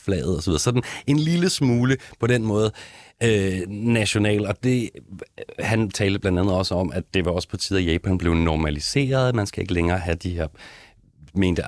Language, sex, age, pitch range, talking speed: Danish, male, 40-59, 80-105 Hz, 195 wpm